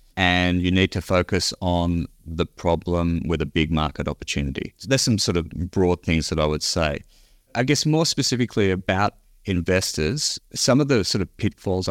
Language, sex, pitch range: English, male, 80-95 Hz